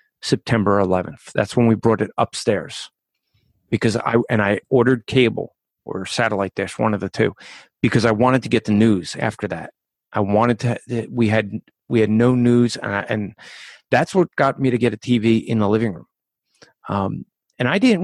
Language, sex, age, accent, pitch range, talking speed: English, male, 40-59, American, 110-135 Hz, 190 wpm